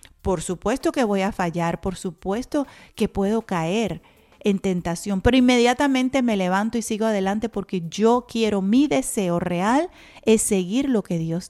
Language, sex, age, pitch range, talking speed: Spanish, female, 40-59, 180-230 Hz, 160 wpm